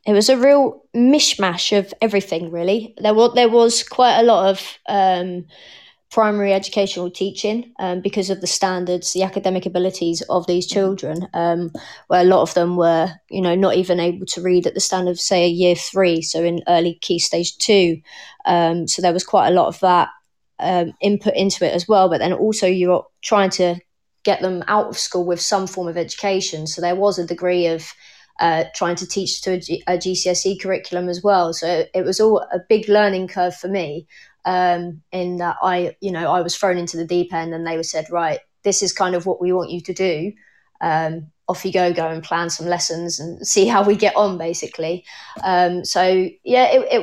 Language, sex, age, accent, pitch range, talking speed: English, female, 20-39, British, 175-200 Hz, 215 wpm